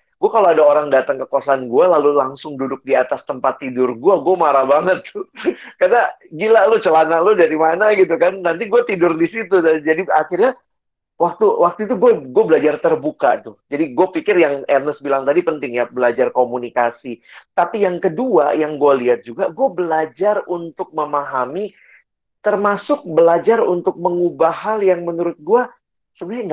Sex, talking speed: male, 170 wpm